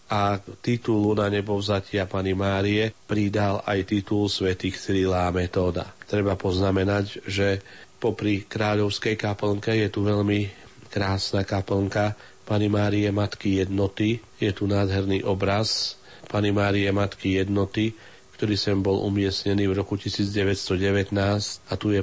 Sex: male